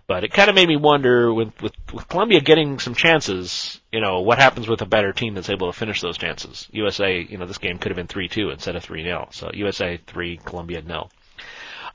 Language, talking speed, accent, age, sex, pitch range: English, 240 wpm, American, 40-59, male, 105-145 Hz